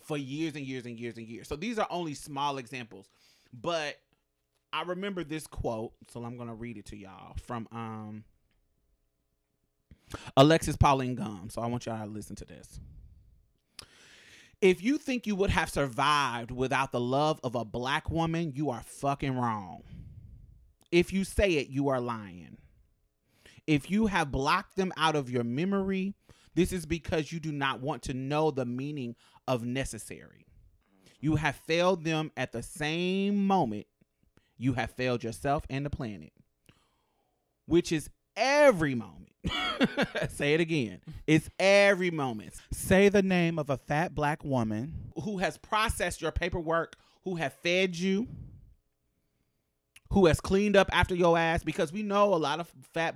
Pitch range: 120-165 Hz